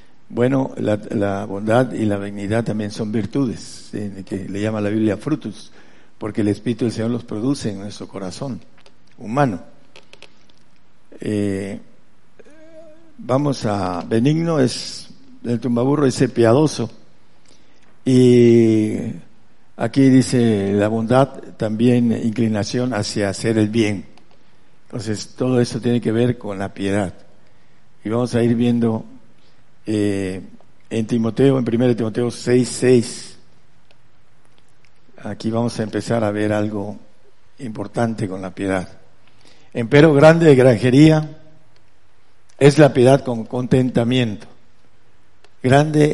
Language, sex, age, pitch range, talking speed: Spanish, male, 60-79, 105-125 Hz, 115 wpm